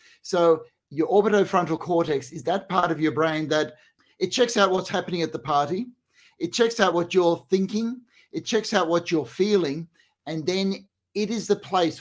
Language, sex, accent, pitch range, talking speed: English, male, Australian, 155-190 Hz, 185 wpm